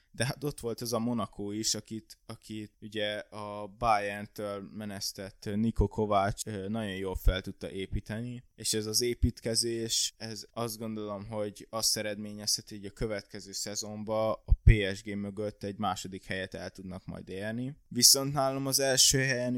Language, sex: Hungarian, male